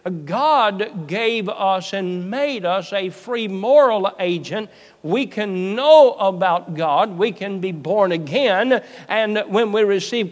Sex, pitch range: male, 170-215 Hz